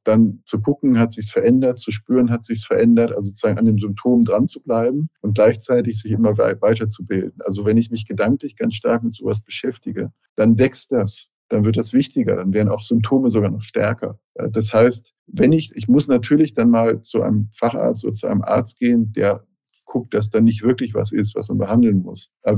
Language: German